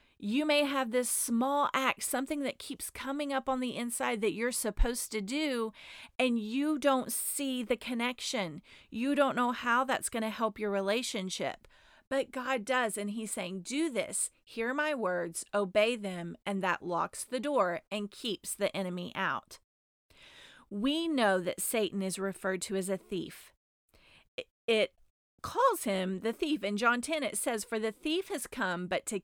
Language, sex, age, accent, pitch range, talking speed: English, female, 40-59, American, 195-260 Hz, 175 wpm